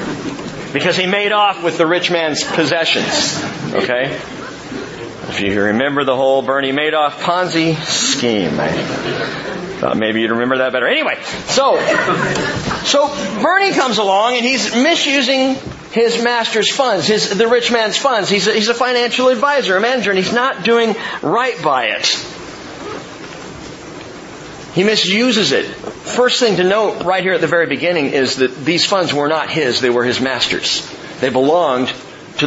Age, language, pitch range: 40-59, English, 155-235 Hz